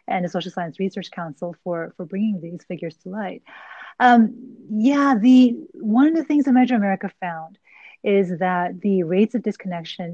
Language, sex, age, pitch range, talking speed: English, female, 30-49, 175-215 Hz, 180 wpm